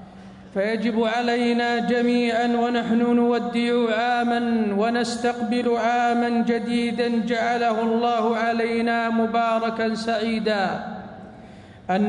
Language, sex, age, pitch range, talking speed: Arabic, male, 50-69, 220-235 Hz, 75 wpm